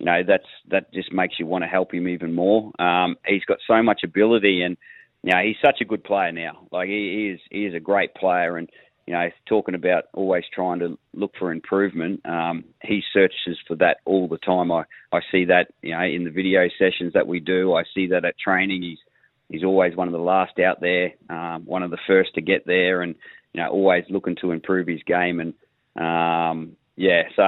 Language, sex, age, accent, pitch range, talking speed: English, male, 30-49, Australian, 90-100 Hz, 225 wpm